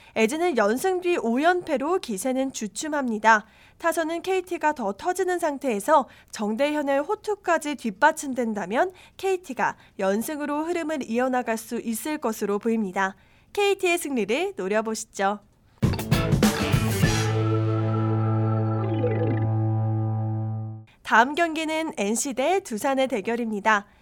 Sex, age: female, 20-39